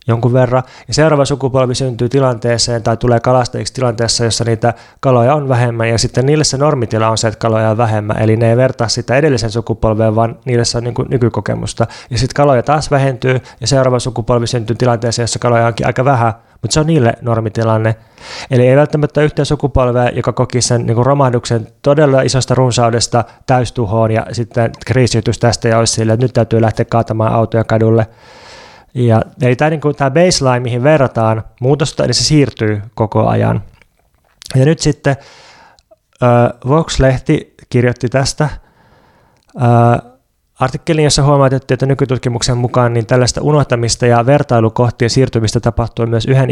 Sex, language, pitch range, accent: male, Finnish, 115-130 Hz, native